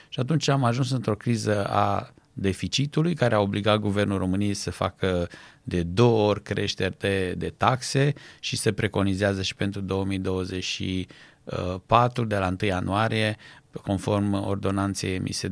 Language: Romanian